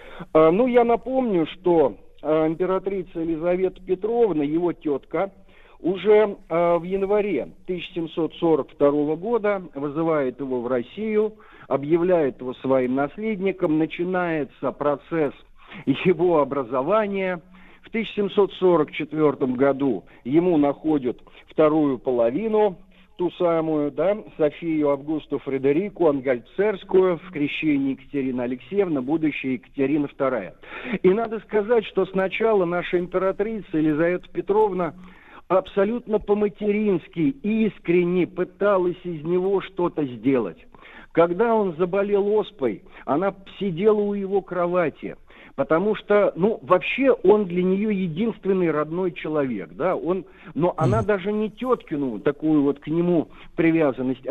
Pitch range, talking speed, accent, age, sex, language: 150-205 Hz, 105 wpm, native, 50-69, male, Russian